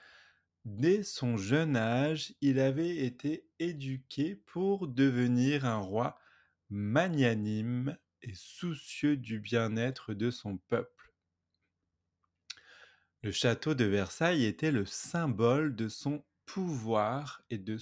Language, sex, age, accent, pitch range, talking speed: French, male, 30-49, French, 110-145 Hz, 110 wpm